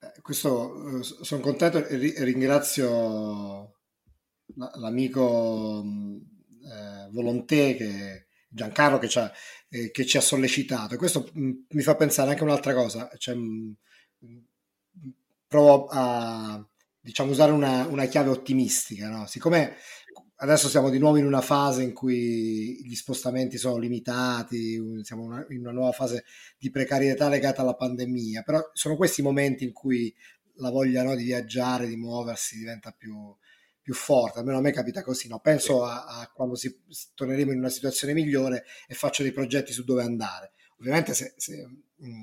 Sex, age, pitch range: male, 30-49, 115-140 Hz